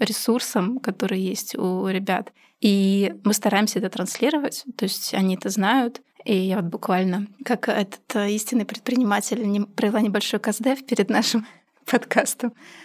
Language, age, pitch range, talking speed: Russian, 20-39, 190-230 Hz, 135 wpm